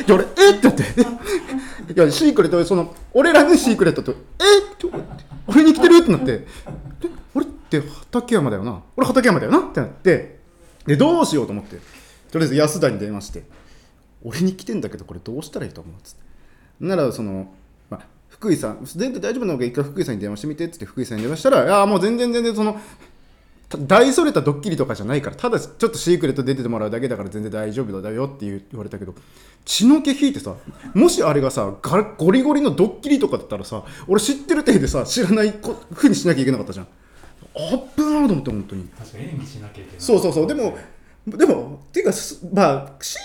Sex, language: male, Japanese